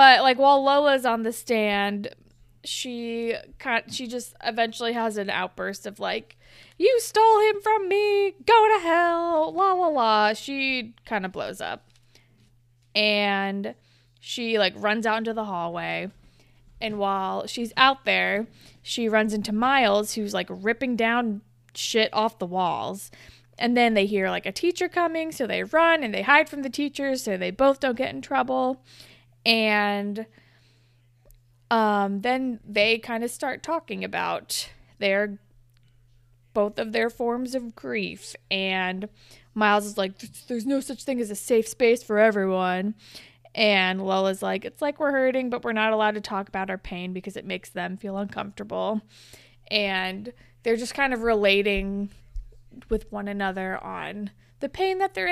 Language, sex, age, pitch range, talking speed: English, female, 20-39, 190-250 Hz, 160 wpm